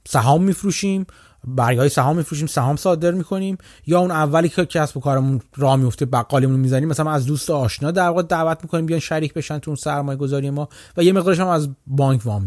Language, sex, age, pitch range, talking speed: Persian, male, 30-49, 125-175 Hz, 195 wpm